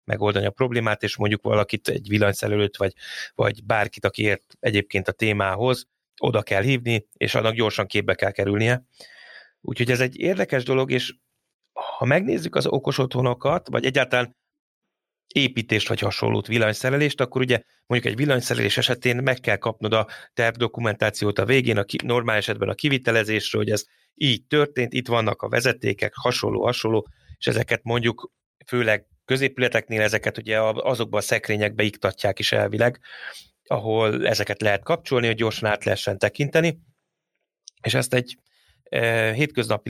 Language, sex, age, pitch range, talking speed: Hungarian, male, 30-49, 105-125 Hz, 145 wpm